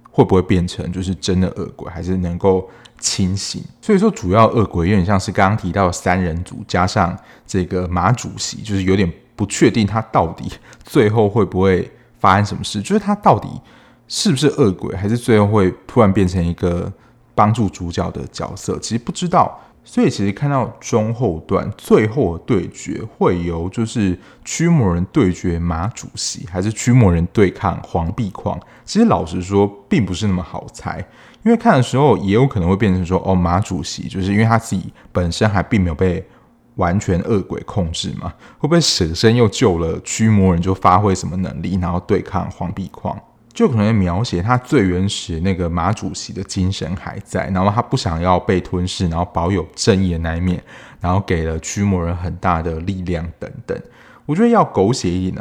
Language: Chinese